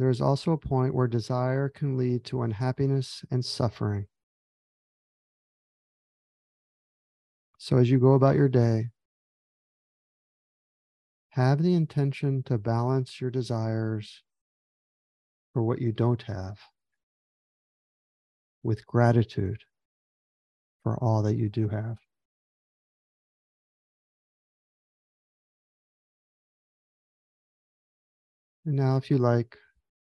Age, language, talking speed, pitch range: 40-59, English, 90 wpm, 110-130 Hz